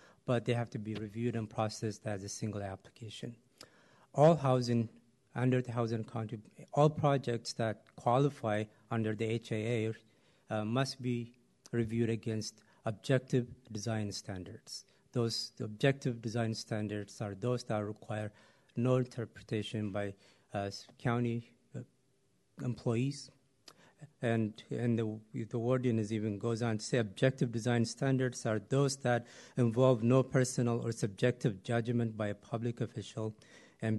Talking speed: 130 wpm